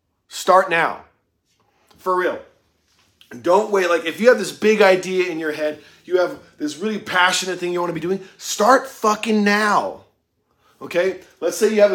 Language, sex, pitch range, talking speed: English, male, 165-215 Hz, 175 wpm